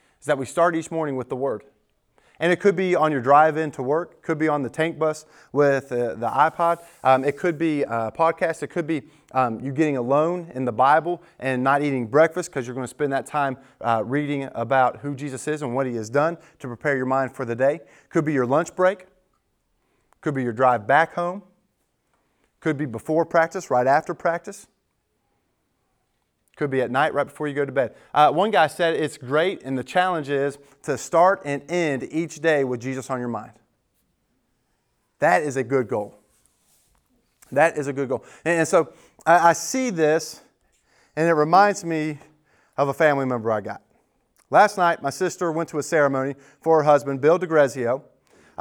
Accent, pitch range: American, 135-170 Hz